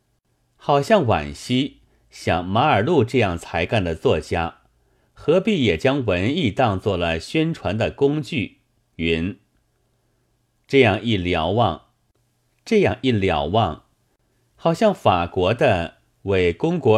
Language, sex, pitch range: Chinese, male, 85-130 Hz